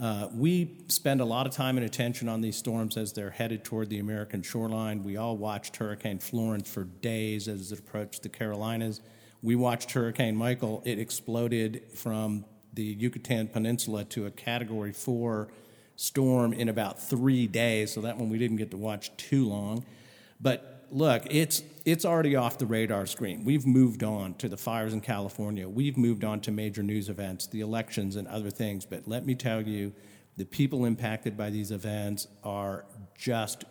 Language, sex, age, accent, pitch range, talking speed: English, male, 50-69, American, 105-120 Hz, 180 wpm